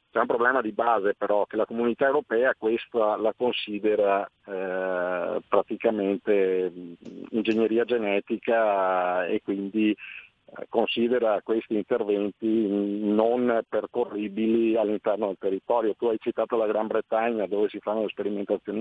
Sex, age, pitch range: male, 50-69, 100-115 Hz